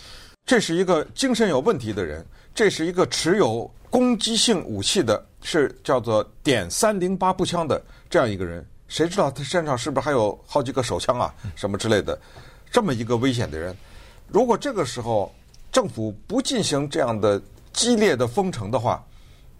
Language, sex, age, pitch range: Chinese, male, 60-79, 100-160 Hz